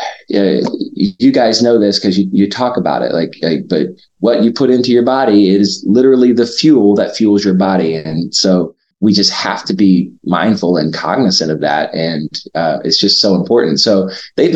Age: 30-49